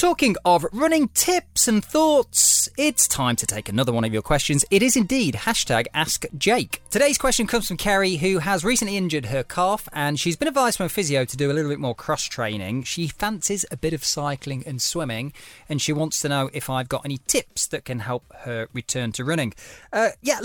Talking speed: 215 wpm